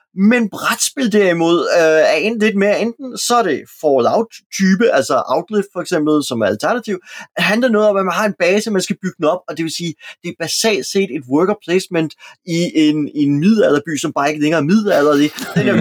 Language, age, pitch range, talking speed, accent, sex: Danish, 30-49, 155-205 Hz, 215 wpm, native, male